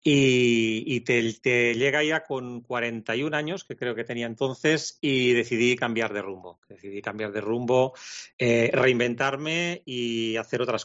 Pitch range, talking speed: 110-130 Hz, 155 wpm